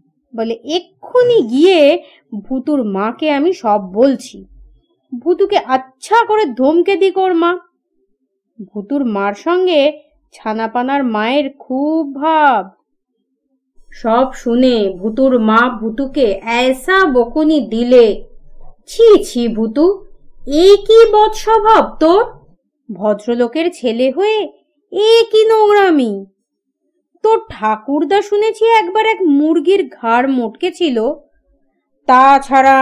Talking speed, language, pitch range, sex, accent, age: 55 wpm, Bengali, 240-360 Hz, female, native, 30-49